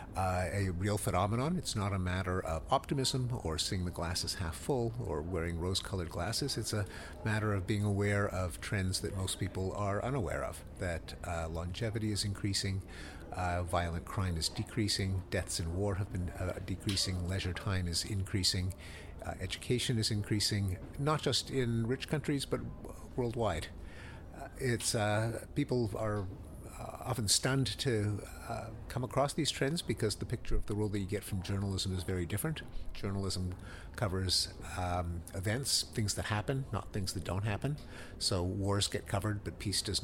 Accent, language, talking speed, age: American, English, 170 wpm, 50-69